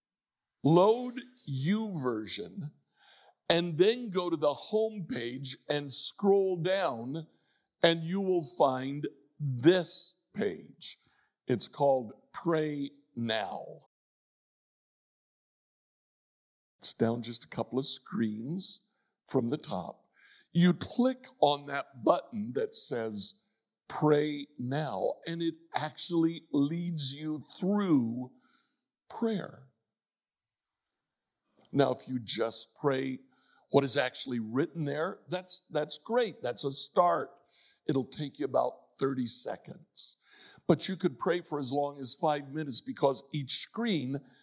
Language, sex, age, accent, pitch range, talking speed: English, male, 60-79, American, 140-190 Hz, 115 wpm